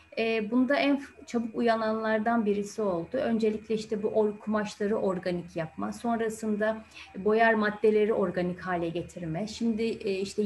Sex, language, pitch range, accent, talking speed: female, Turkish, 200-250 Hz, native, 120 wpm